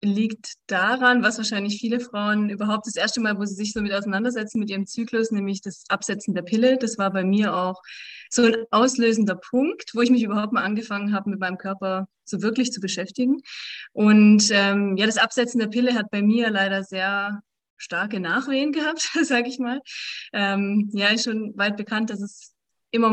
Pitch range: 195-235 Hz